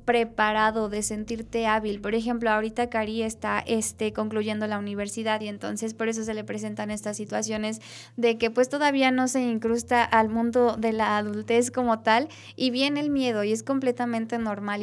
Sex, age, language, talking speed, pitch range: female, 20-39, Spanish, 180 wpm, 220-250 Hz